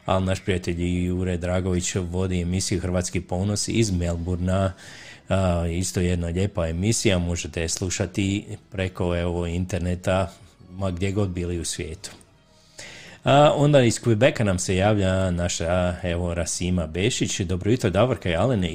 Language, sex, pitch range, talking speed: Croatian, male, 90-105 Hz, 130 wpm